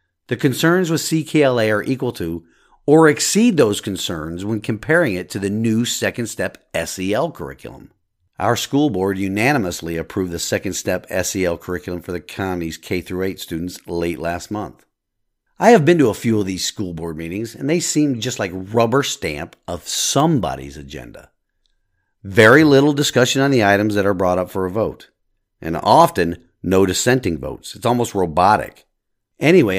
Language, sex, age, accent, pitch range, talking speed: English, male, 50-69, American, 90-130 Hz, 165 wpm